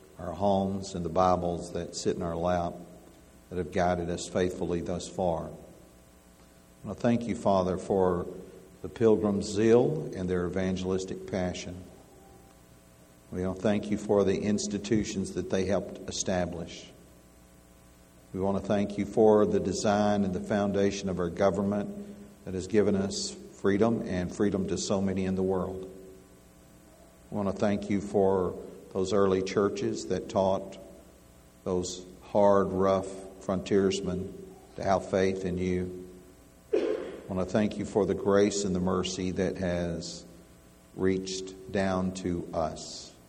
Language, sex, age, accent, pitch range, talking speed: English, male, 60-79, American, 85-95 Hz, 150 wpm